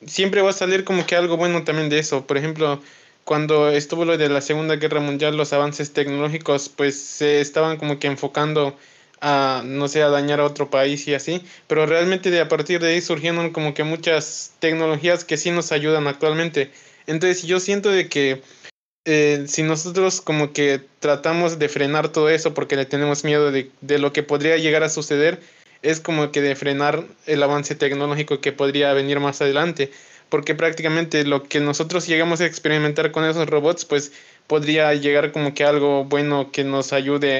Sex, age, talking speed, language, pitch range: male, 20-39, 190 wpm, Spanish, 145-160 Hz